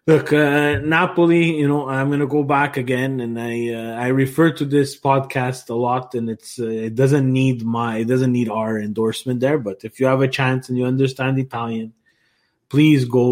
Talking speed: 205 wpm